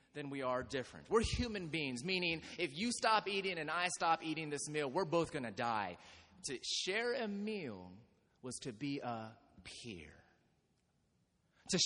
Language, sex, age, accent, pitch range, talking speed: English, male, 30-49, American, 145-205 Hz, 165 wpm